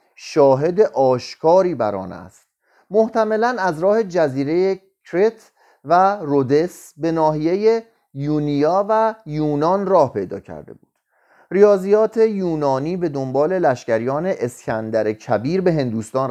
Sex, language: male, Persian